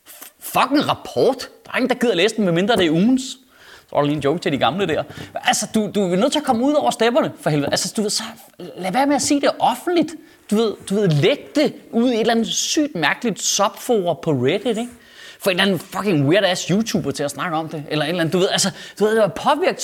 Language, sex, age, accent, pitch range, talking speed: Danish, male, 30-49, native, 155-235 Hz, 260 wpm